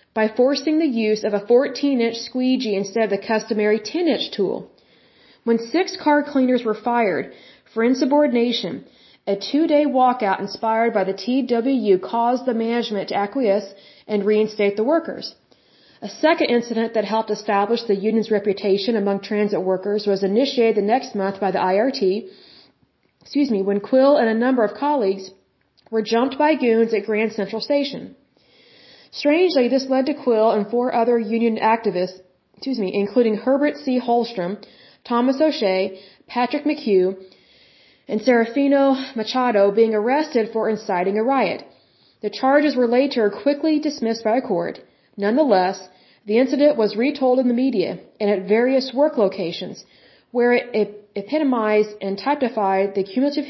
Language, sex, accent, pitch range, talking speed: German, female, American, 205-260 Hz, 155 wpm